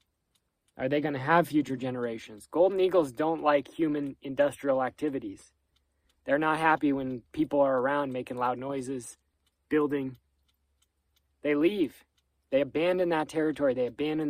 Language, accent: English, American